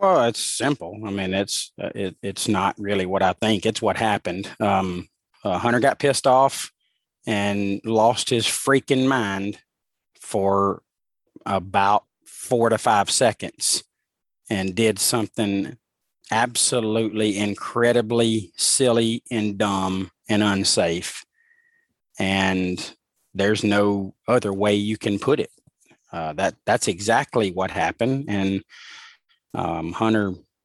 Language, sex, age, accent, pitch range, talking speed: English, male, 40-59, American, 100-115 Hz, 120 wpm